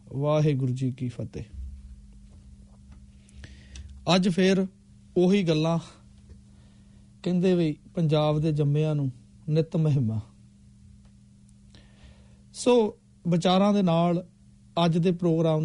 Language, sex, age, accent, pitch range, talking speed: English, male, 40-59, Indian, 135-180 Hz, 90 wpm